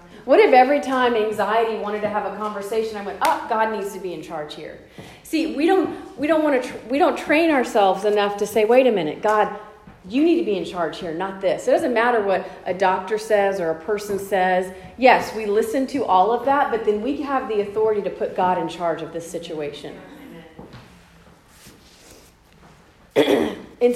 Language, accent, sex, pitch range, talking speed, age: English, American, female, 185-225 Hz, 200 wpm, 40-59